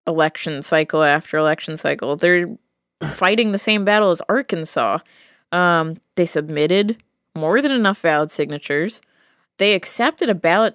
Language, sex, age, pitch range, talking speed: English, female, 20-39, 165-230 Hz, 135 wpm